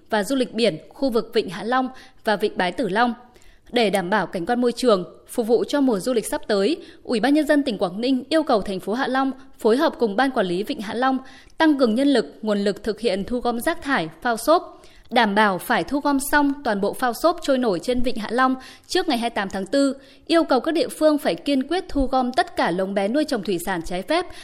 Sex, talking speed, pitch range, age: female, 260 wpm, 215-285 Hz, 20-39